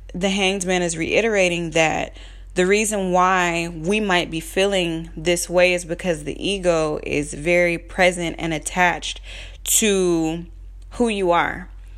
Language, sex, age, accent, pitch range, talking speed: English, female, 20-39, American, 160-190 Hz, 140 wpm